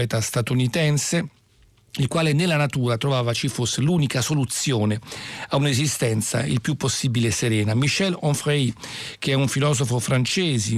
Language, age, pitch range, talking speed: Italian, 50-69, 120-150 Hz, 130 wpm